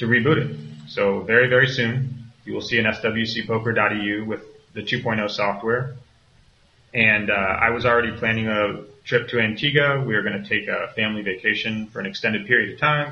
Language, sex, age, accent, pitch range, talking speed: English, male, 30-49, American, 105-125 Hz, 185 wpm